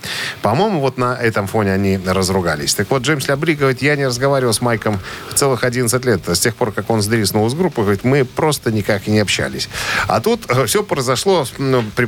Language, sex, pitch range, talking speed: Russian, male, 100-130 Hz, 200 wpm